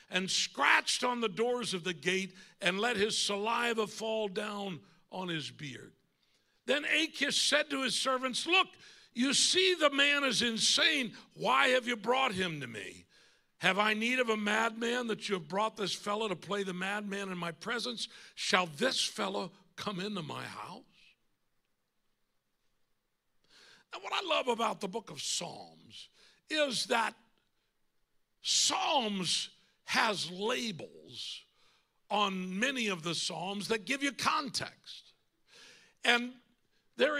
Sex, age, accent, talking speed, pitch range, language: male, 60-79, American, 140 wpm, 195-255 Hz, English